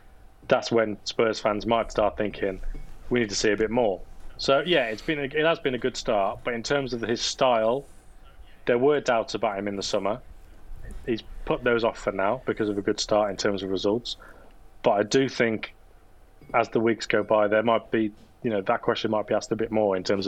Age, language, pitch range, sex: 20-39, English, 100-120 Hz, male